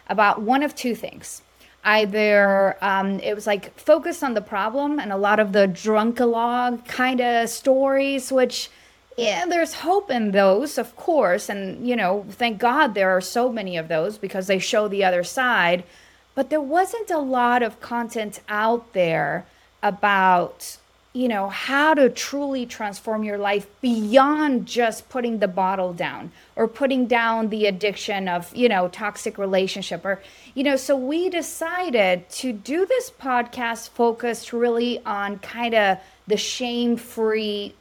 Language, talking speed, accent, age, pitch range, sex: English, 160 wpm, American, 30-49, 200-255 Hz, female